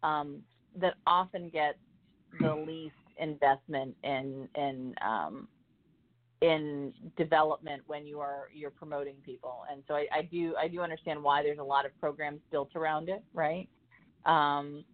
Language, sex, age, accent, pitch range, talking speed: English, female, 40-59, American, 140-170 Hz, 145 wpm